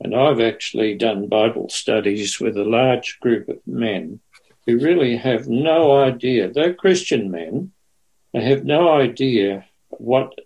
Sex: male